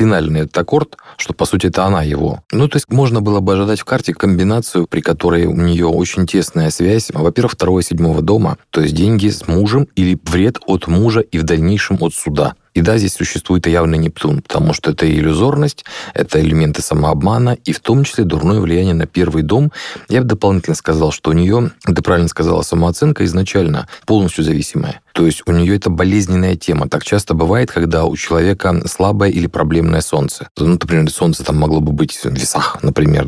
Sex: male